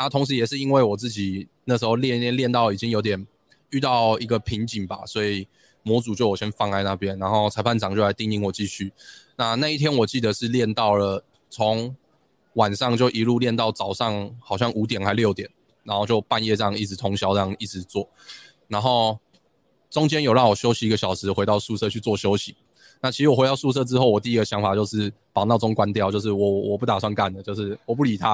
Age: 20-39